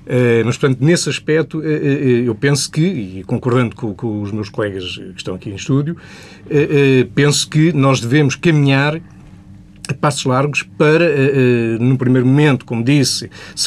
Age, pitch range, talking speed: 50-69, 125-155 Hz, 150 wpm